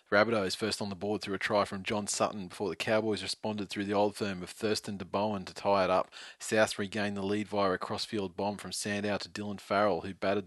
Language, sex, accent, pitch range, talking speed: English, male, Australian, 100-110 Hz, 245 wpm